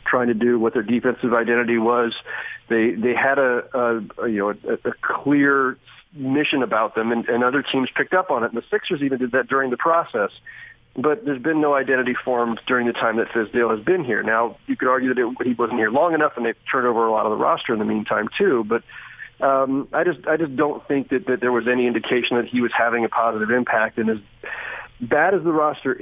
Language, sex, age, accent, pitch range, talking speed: English, male, 40-59, American, 120-155 Hz, 240 wpm